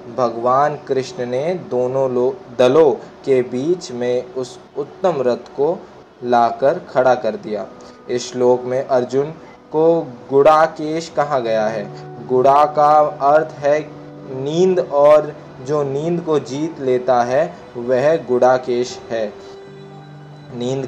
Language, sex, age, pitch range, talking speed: Hindi, male, 20-39, 130-160 Hz, 120 wpm